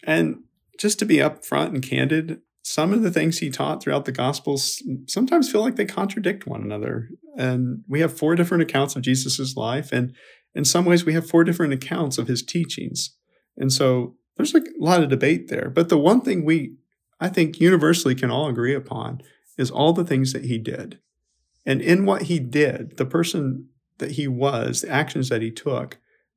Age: 40-59